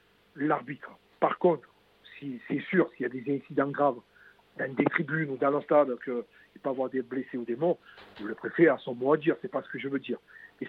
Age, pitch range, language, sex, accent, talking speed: 60-79, 130-175 Hz, French, male, French, 240 wpm